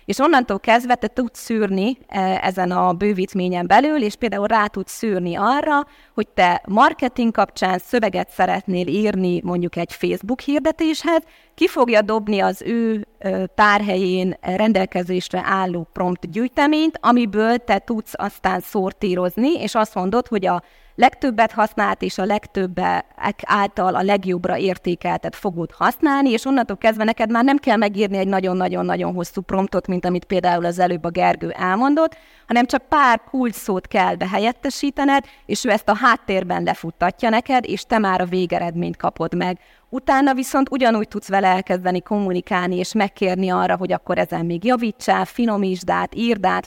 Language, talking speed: Hungarian, 150 wpm